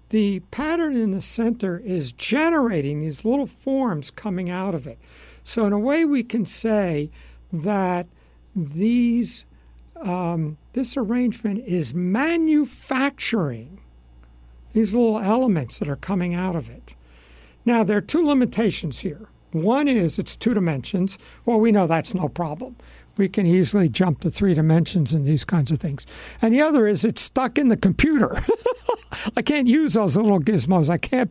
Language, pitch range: English, 160-230 Hz